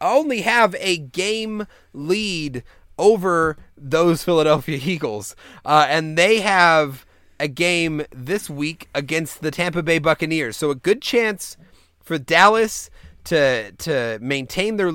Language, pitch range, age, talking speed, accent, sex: English, 150-200 Hz, 30-49, 130 wpm, American, male